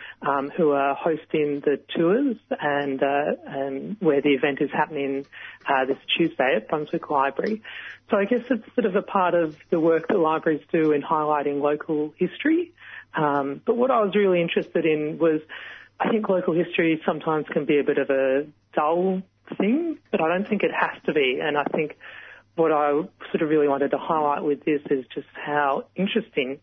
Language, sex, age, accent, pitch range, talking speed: English, female, 30-49, Australian, 140-175 Hz, 190 wpm